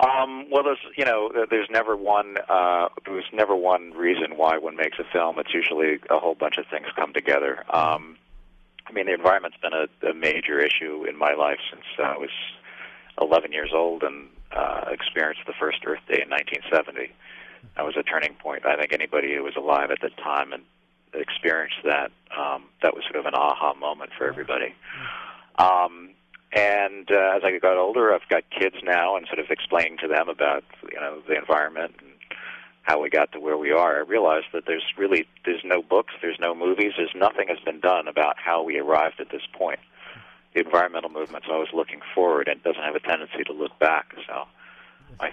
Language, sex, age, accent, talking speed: English, male, 40-59, American, 205 wpm